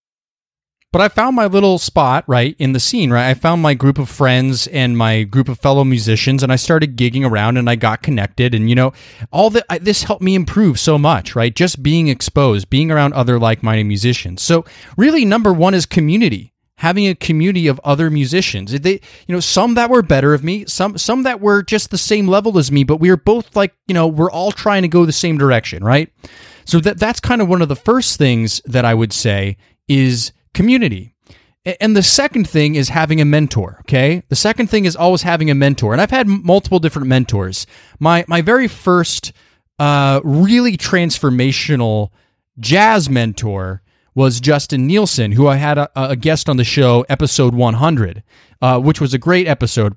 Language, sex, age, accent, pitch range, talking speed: English, male, 30-49, American, 125-180 Hz, 200 wpm